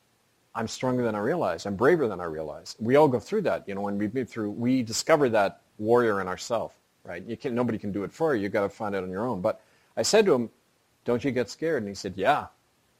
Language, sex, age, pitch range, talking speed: English, male, 40-59, 100-125 Hz, 265 wpm